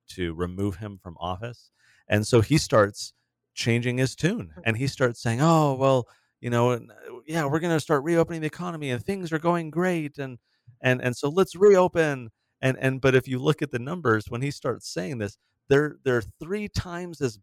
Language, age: English, 30-49